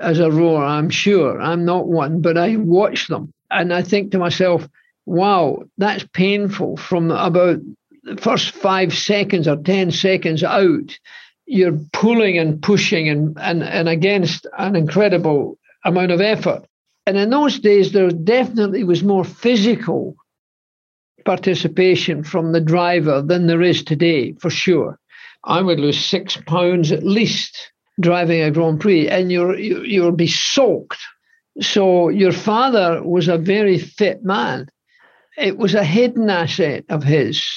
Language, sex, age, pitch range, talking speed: English, male, 60-79, 170-200 Hz, 150 wpm